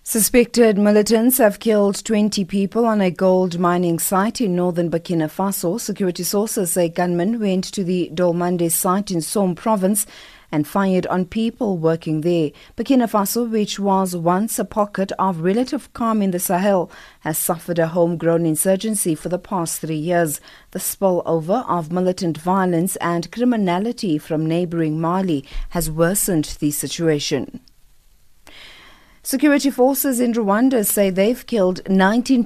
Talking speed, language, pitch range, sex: 145 wpm, English, 165-205 Hz, female